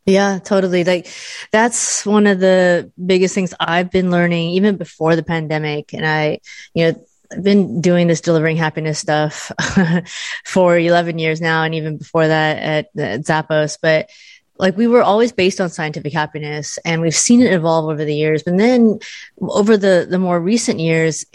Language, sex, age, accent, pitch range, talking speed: English, female, 30-49, American, 160-190 Hz, 175 wpm